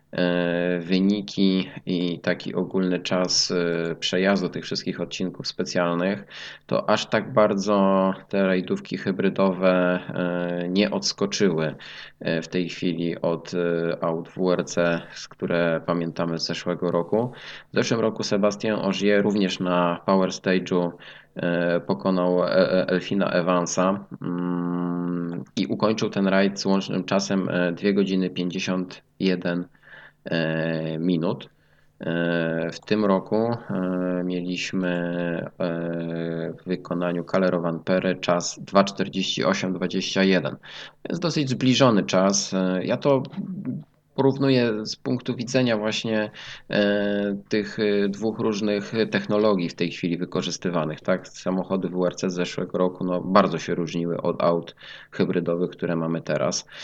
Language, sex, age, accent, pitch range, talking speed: Polish, male, 20-39, native, 85-100 Hz, 105 wpm